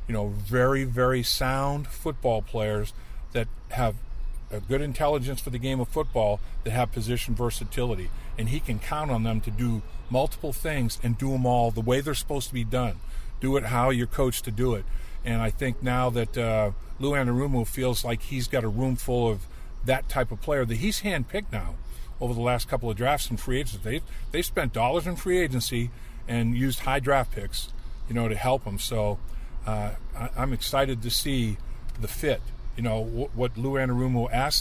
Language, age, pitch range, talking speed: English, 50-69, 110-130 Hz, 200 wpm